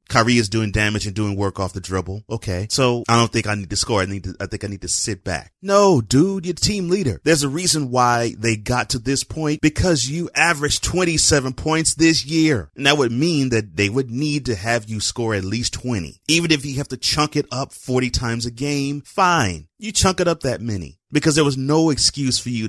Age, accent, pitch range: 30-49, American, 100-130 Hz